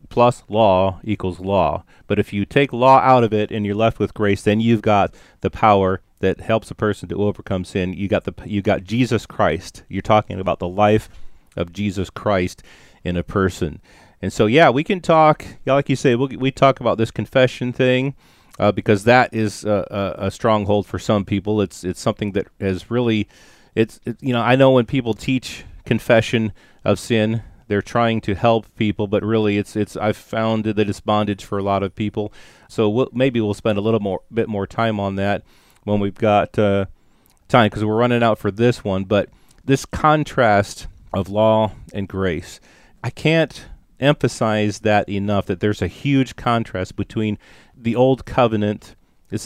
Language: English